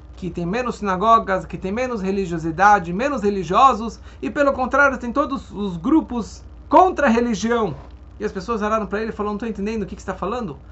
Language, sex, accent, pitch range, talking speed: Portuguese, male, Brazilian, 185-265 Hz, 205 wpm